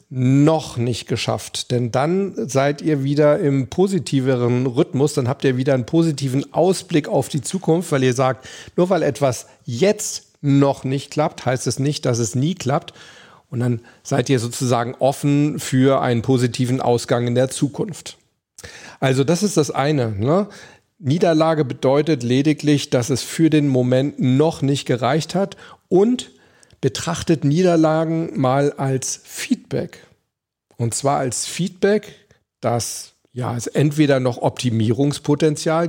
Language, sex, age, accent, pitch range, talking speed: German, male, 40-59, German, 130-155 Hz, 140 wpm